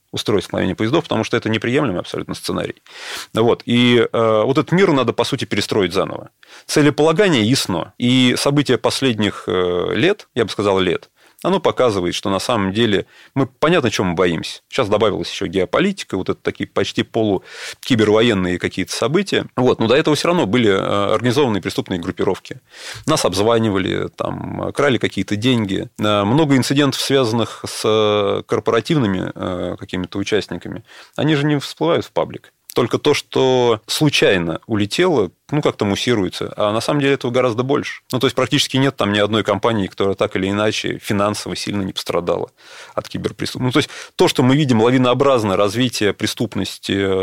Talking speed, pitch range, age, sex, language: 160 wpm, 100-135 Hz, 30-49, male, Russian